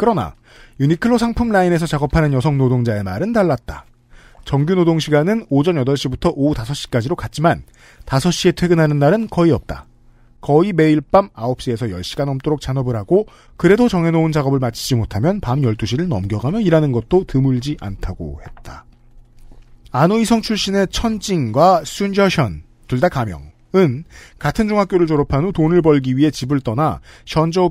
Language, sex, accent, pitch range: Korean, male, native, 125-175 Hz